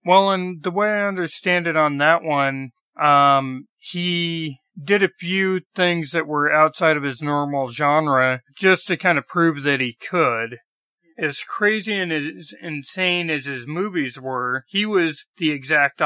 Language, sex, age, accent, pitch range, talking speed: English, male, 40-59, American, 135-165 Hz, 165 wpm